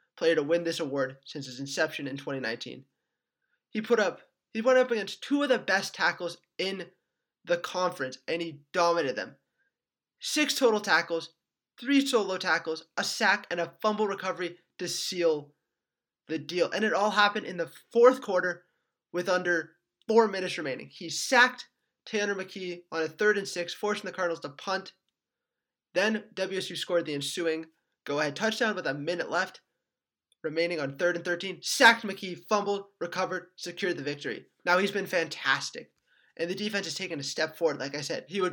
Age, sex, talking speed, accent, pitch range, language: 20-39, male, 175 wpm, American, 160-200 Hz, English